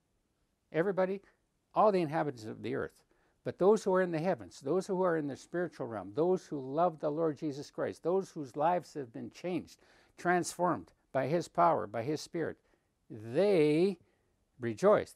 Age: 60-79